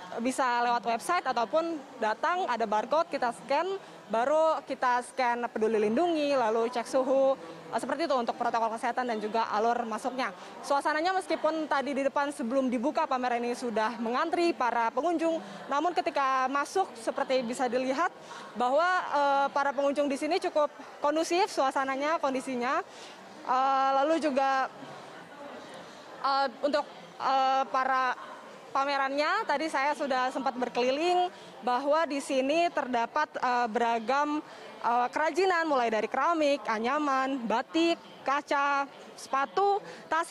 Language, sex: Indonesian, female